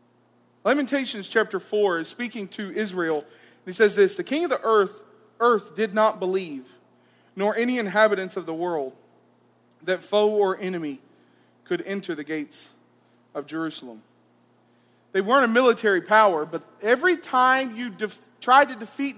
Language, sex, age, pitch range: English, male, 40-59, 200-270 Hz